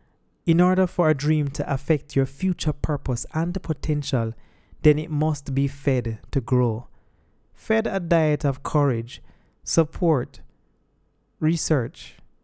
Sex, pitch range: male, 125-155 Hz